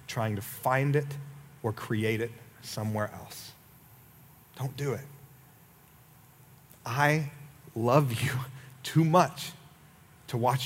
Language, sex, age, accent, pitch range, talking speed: English, male, 30-49, American, 125-145 Hz, 105 wpm